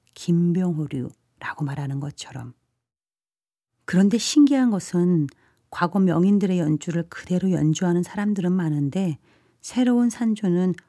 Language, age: Korean, 40-59